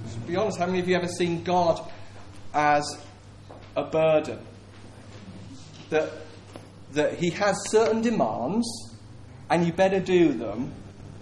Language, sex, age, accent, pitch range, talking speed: English, male, 30-49, British, 100-160 Hz, 135 wpm